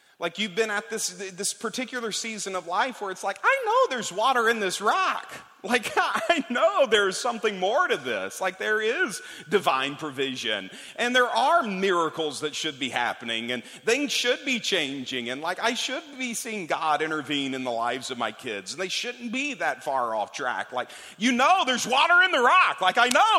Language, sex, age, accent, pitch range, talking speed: English, male, 40-59, American, 160-240 Hz, 205 wpm